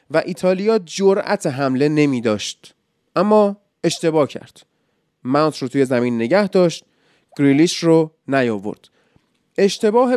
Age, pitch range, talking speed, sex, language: 30-49, 145-210 Hz, 110 wpm, male, Persian